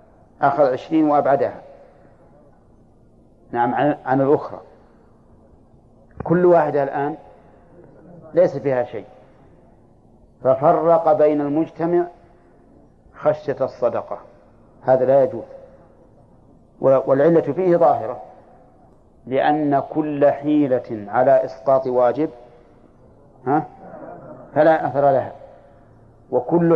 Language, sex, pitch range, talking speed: Arabic, male, 125-155 Hz, 75 wpm